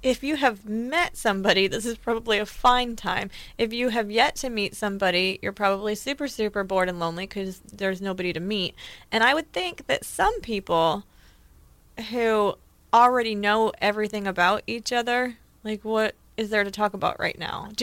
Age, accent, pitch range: 20-39, American, 195-230 Hz